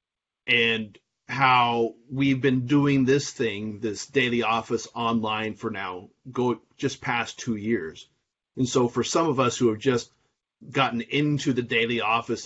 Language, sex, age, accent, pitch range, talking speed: English, male, 30-49, American, 115-135 Hz, 155 wpm